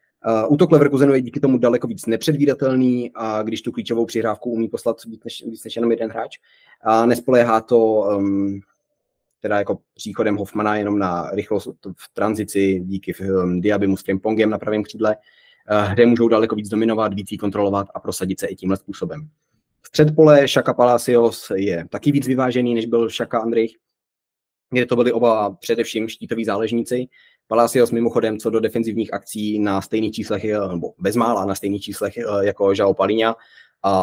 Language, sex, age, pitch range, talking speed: Czech, male, 20-39, 100-115 Hz, 170 wpm